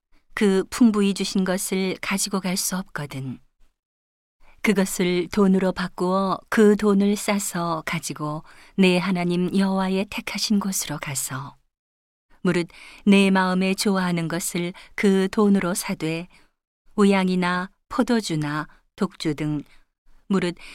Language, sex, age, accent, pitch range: Korean, female, 40-59, native, 165-200 Hz